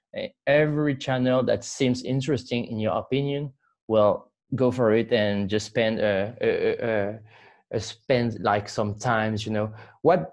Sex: male